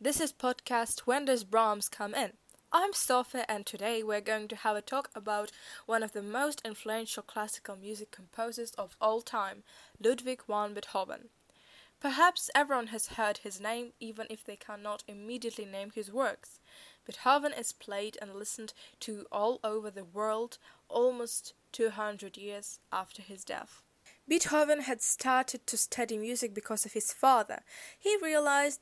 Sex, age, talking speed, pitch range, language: female, 10-29, 155 wpm, 210-255 Hz, English